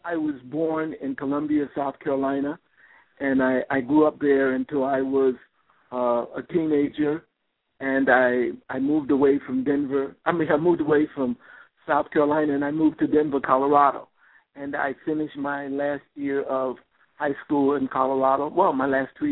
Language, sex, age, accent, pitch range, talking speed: English, male, 60-79, American, 125-140 Hz, 170 wpm